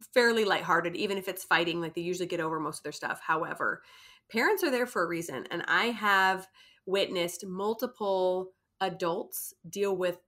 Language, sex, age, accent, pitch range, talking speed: English, female, 30-49, American, 175-230 Hz, 175 wpm